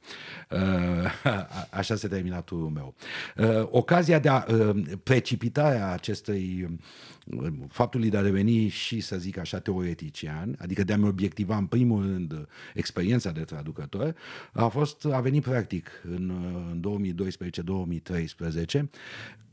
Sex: male